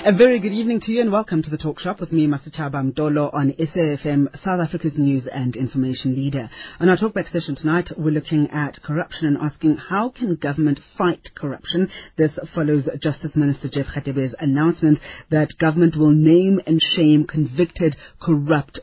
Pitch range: 145-180 Hz